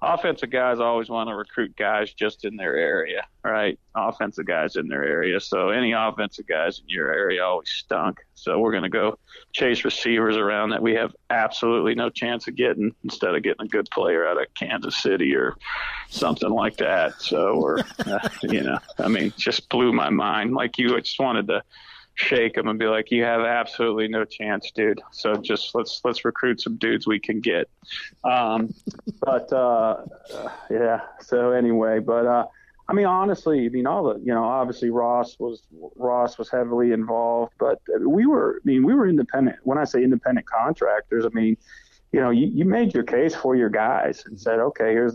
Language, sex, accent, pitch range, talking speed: English, male, American, 115-135 Hz, 195 wpm